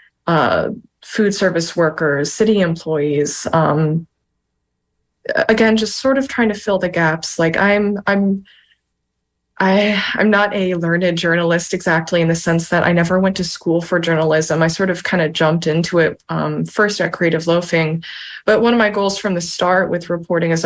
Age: 20-39